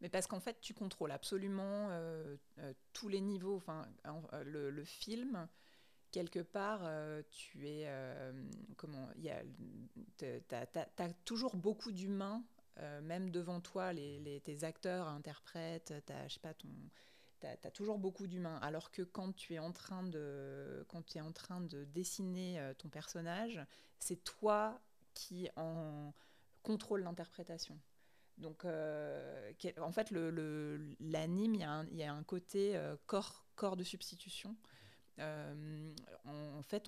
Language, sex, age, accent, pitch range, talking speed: French, female, 30-49, French, 150-195 Hz, 145 wpm